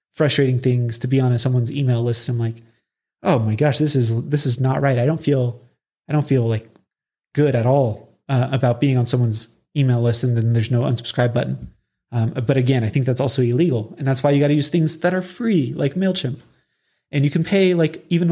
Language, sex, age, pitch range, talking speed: English, male, 30-49, 125-160 Hz, 225 wpm